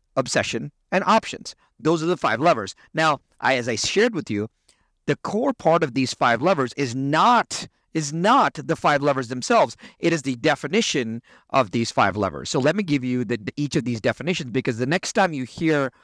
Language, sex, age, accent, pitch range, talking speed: English, male, 40-59, American, 125-175 Hz, 200 wpm